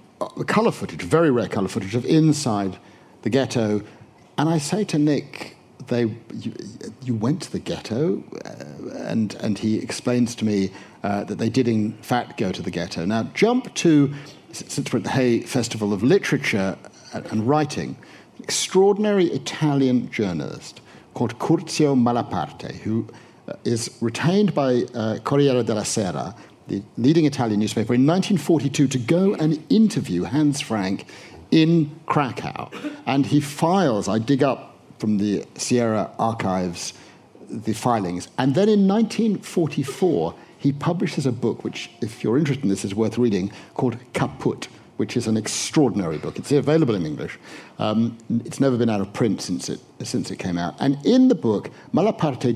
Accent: British